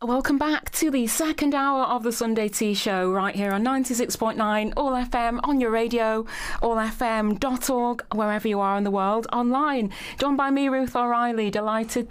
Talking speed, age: 170 wpm, 30-49